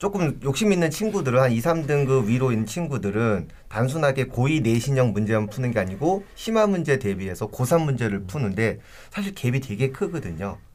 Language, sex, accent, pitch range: Korean, male, native, 105-155 Hz